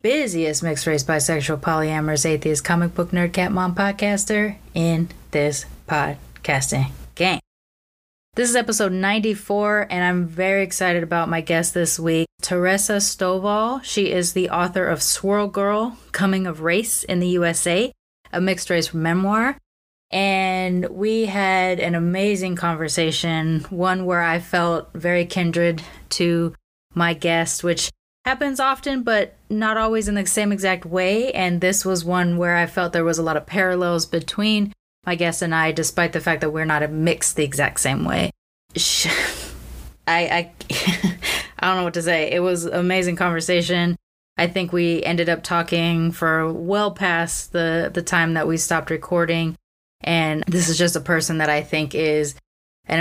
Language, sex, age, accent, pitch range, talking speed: English, female, 20-39, American, 165-190 Hz, 160 wpm